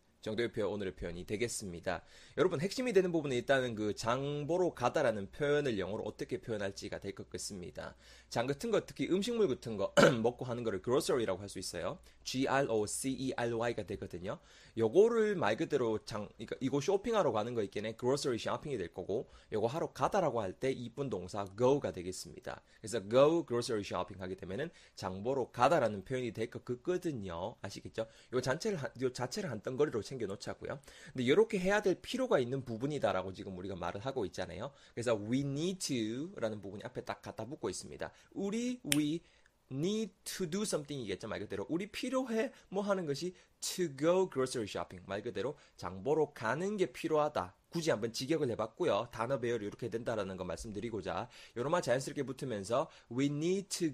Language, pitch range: Korean, 110-170 Hz